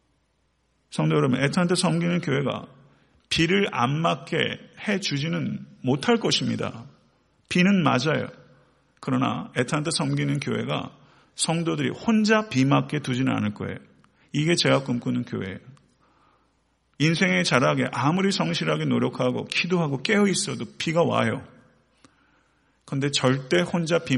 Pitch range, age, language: 125-165 Hz, 40-59, Korean